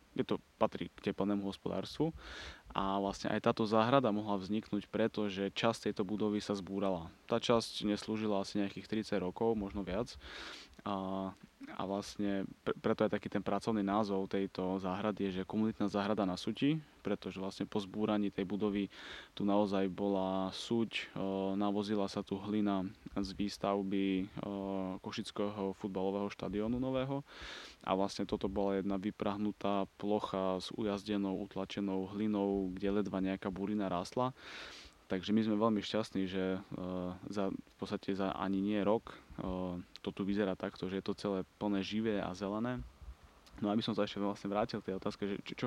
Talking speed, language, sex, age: 155 wpm, Slovak, male, 20-39